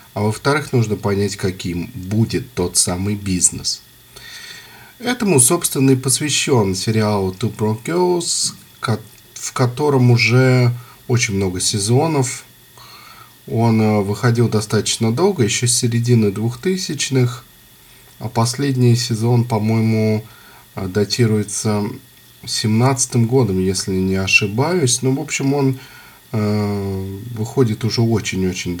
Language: Russian